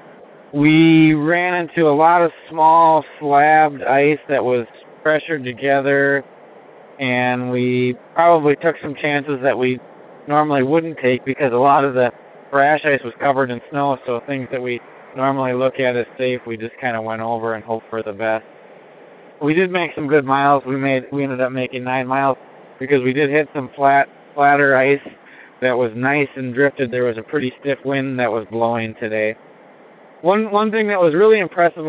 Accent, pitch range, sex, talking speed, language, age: American, 130-155 Hz, male, 185 wpm, English, 20-39